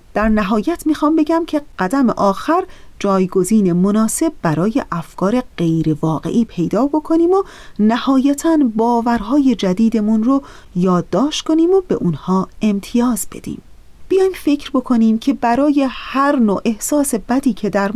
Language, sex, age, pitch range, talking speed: Persian, female, 30-49, 190-260 Hz, 125 wpm